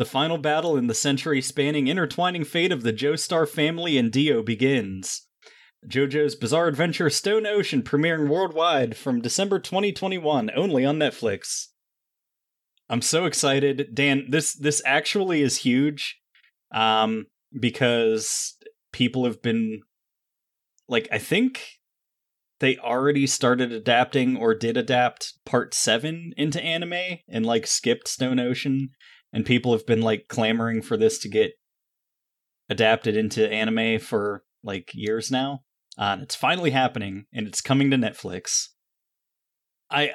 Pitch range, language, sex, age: 115-150 Hz, English, male, 20-39